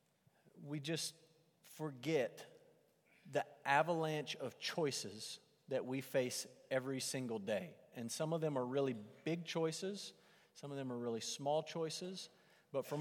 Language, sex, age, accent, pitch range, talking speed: English, male, 40-59, American, 120-170 Hz, 140 wpm